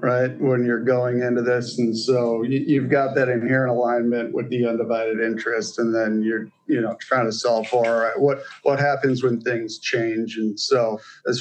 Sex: male